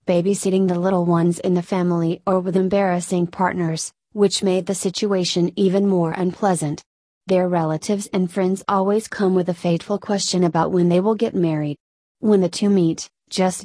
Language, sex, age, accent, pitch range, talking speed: English, female, 30-49, American, 175-200 Hz, 170 wpm